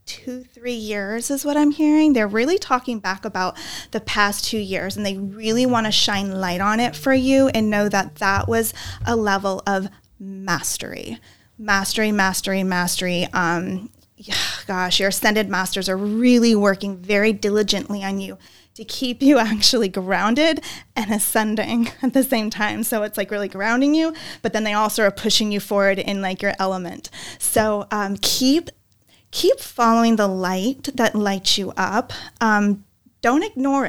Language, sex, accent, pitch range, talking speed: English, female, American, 195-230 Hz, 170 wpm